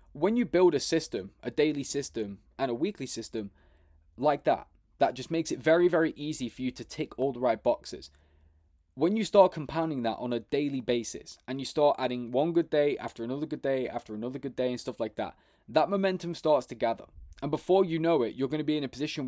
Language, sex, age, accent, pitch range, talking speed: English, male, 20-39, British, 120-155 Hz, 230 wpm